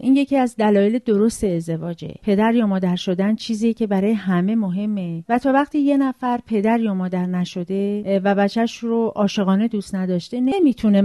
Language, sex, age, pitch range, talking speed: Persian, female, 40-59, 195-265 Hz, 170 wpm